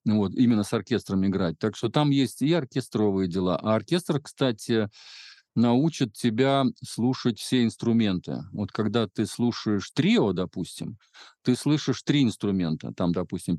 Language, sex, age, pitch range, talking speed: Russian, male, 50-69, 105-135 Hz, 140 wpm